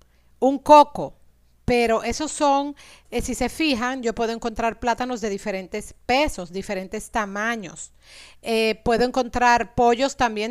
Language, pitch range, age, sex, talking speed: Spanish, 210-260 Hz, 40-59, female, 130 wpm